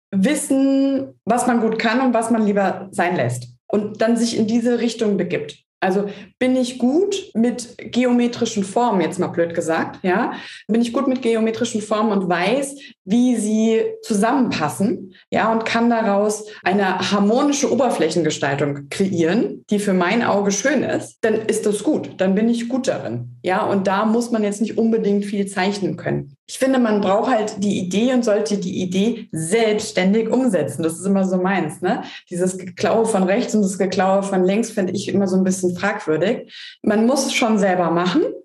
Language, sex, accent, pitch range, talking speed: German, female, German, 190-235 Hz, 180 wpm